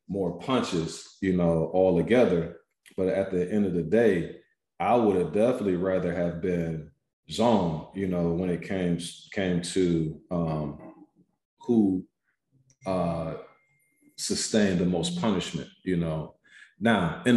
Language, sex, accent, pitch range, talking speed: English, male, American, 90-130 Hz, 135 wpm